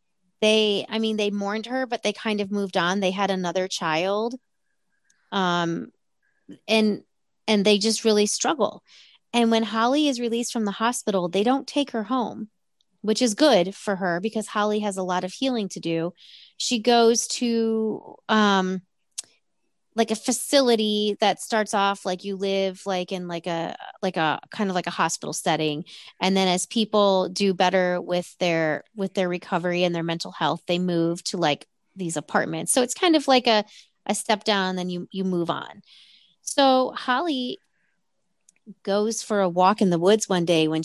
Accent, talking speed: American, 180 wpm